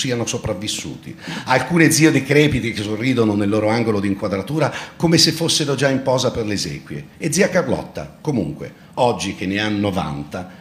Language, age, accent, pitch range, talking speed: Italian, 40-59, native, 95-130 Hz, 170 wpm